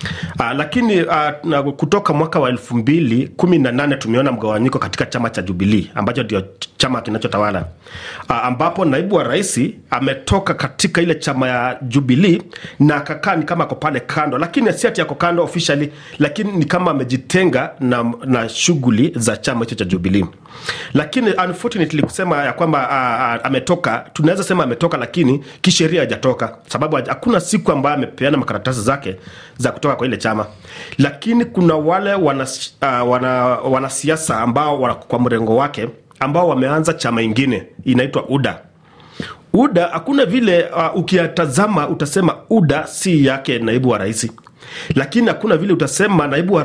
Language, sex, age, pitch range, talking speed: Swahili, male, 40-59, 125-170 Hz, 140 wpm